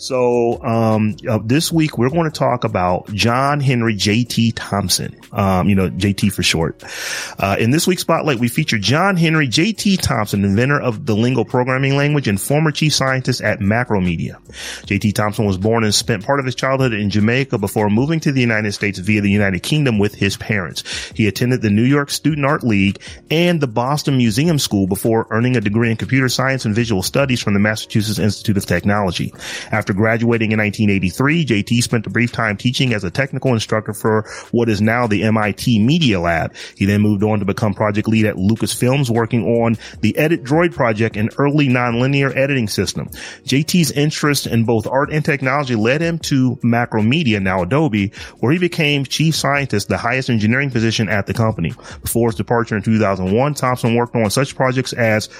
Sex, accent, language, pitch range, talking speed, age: male, American, English, 105-135 Hz, 195 wpm, 30-49